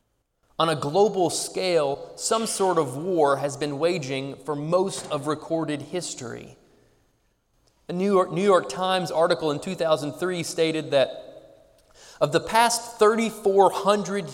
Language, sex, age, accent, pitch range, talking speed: English, male, 20-39, American, 130-180 Hz, 125 wpm